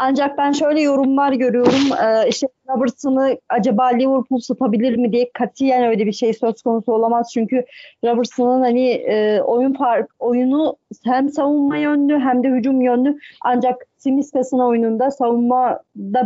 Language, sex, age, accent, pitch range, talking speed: Turkish, female, 40-59, native, 235-265 Hz, 140 wpm